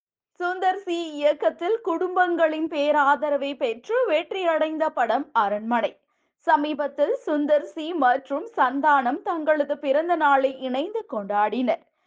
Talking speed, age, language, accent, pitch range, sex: 95 wpm, 20-39, Tamil, native, 255-315 Hz, female